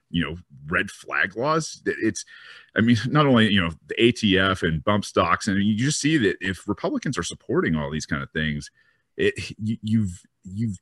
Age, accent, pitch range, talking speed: 40-59, American, 85-115 Hz, 190 wpm